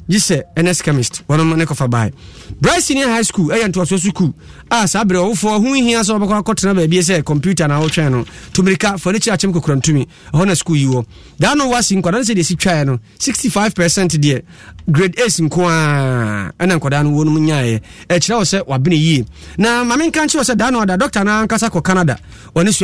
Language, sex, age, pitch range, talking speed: English, male, 30-49, 145-200 Hz, 195 wpm